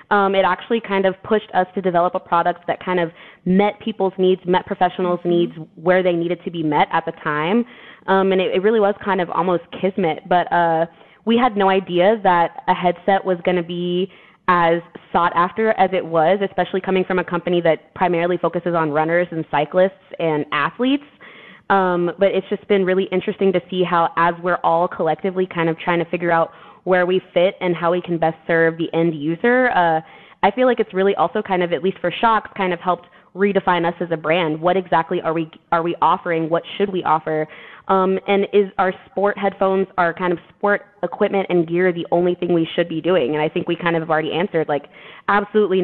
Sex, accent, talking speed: female, American, 220 wpm